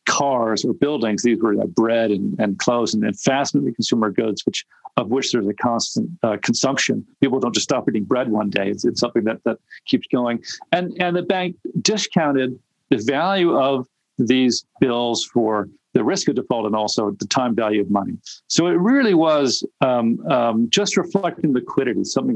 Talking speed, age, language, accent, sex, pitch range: 190 wpm, 50-69, English, American, male, 115-170 Hz